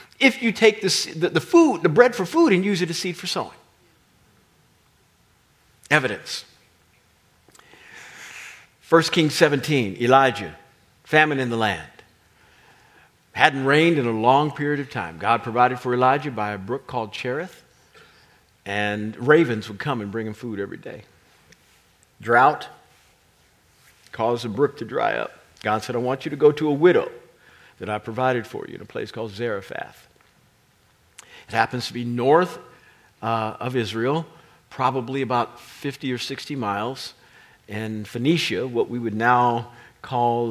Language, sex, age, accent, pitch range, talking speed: English, male, 50-69, American, 110-145 Hz, 150 wpm